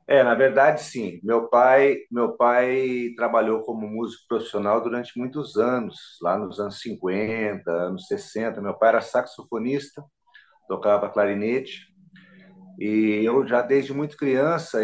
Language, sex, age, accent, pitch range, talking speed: Portuguese, male, 40-59, Brazilian, 115-165 Hz, 135 wpm